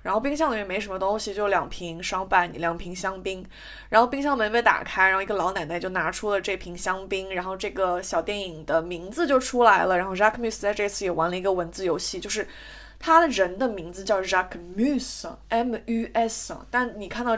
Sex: female